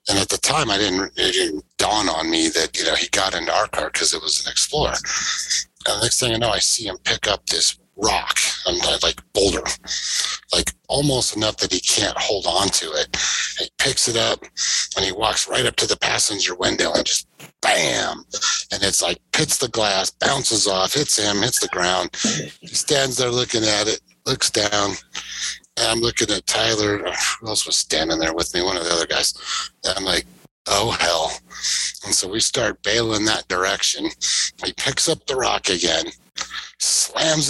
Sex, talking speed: male, 200 wpm